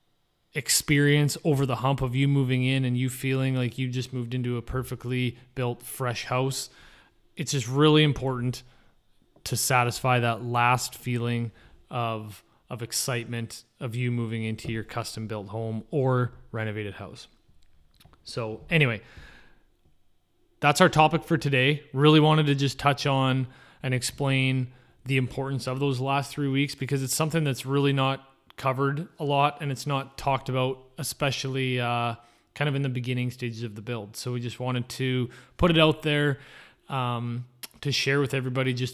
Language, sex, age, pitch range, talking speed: English, male, 20-39, 120-140 Hz, 165 wpm